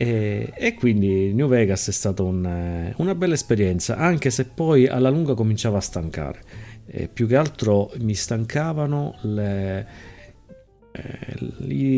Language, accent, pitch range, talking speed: Italian, native, 85-115 Hz, 130 wpm